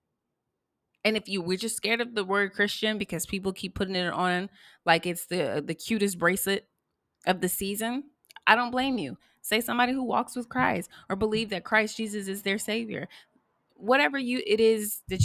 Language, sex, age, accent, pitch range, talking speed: English, female, 20-39, American, 165-215 Hz, 190 wpm